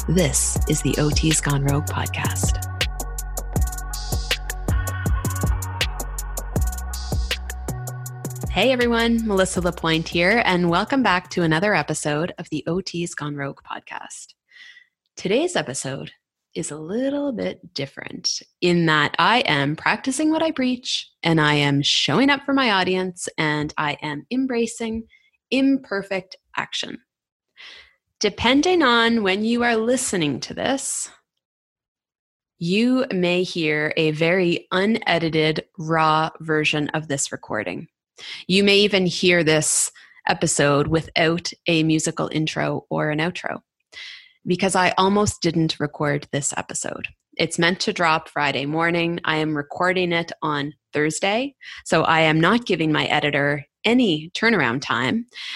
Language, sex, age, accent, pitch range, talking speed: English, female, 30-49, American, 150-210 Hz, 125 wpm